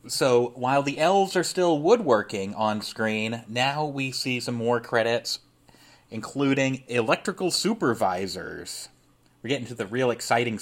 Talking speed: 135 wpm